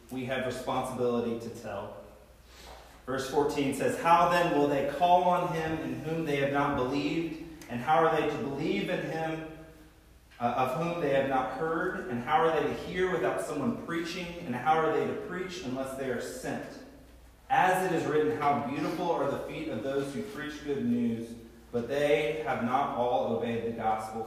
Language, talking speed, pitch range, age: English, 195 wpm, 115-160 Hz, 30-49